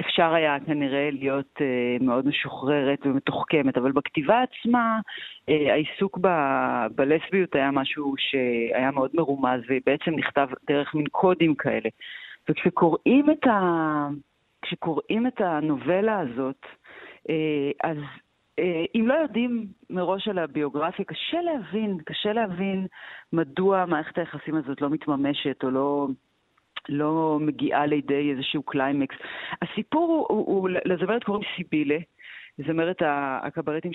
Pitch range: 145-195 Hz